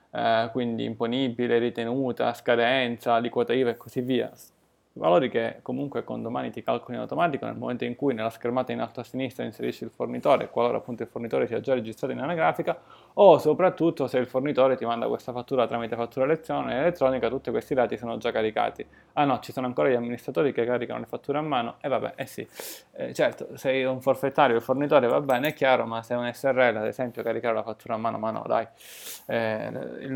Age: 20-39